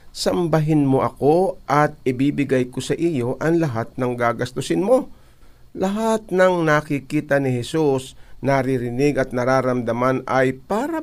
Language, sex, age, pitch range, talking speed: Filipino, male, 50-69, 125-155 Hz, 125 wpm